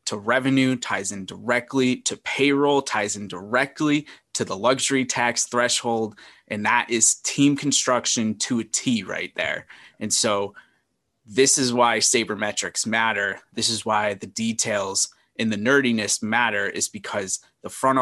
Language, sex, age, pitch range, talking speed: English, male, 20-39, 105-130 Hz, 150 wpm